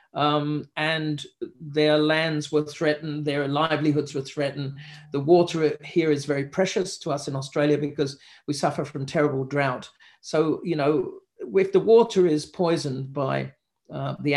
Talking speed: 155 wpm